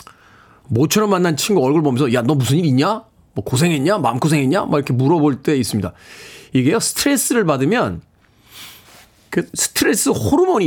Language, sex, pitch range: Korean, male, 130-185 Hz